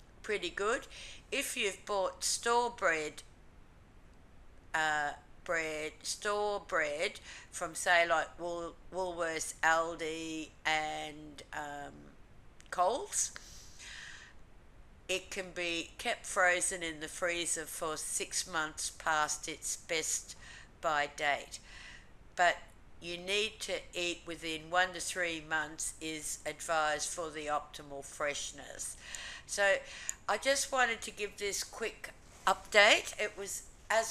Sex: female